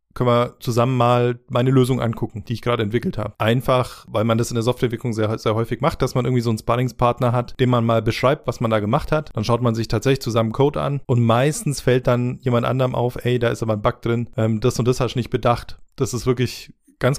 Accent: German